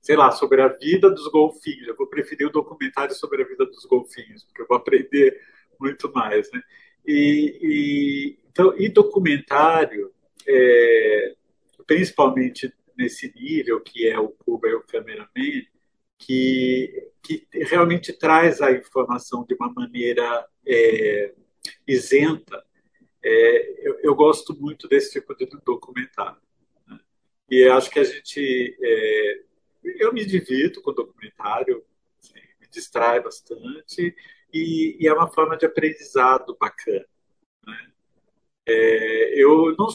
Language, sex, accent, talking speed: Portuguese, male, Brazilian, 135 wpm